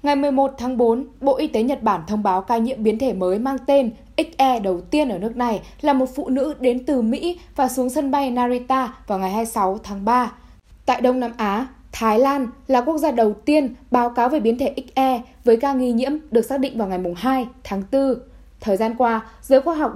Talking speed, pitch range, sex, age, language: 230 wpm, 220-275 Hz, female, 10-29, Vietnamese